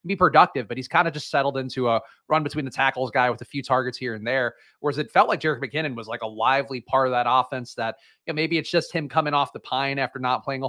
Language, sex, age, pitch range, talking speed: English, male, 30-49, 125-150 Hz, 285 wpm